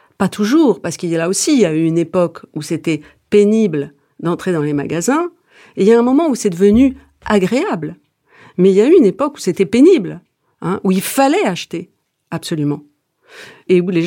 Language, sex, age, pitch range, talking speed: French, female, 50-69, 180-275 Hz, 215 wpm